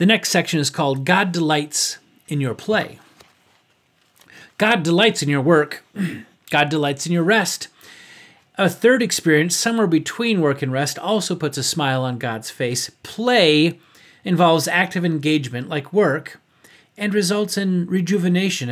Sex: male